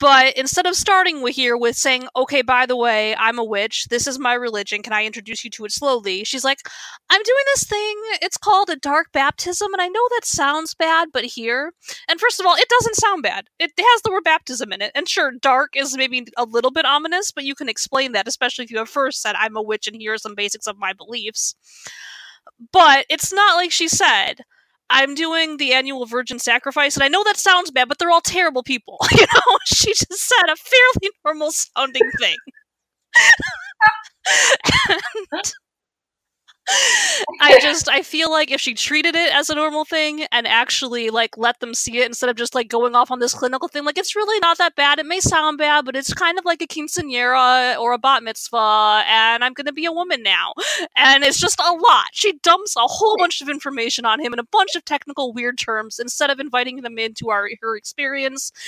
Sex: female